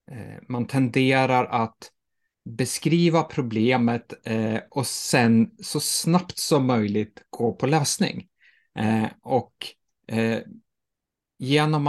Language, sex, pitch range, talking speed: Swedish, male, 110-150 Hz, 80 wpm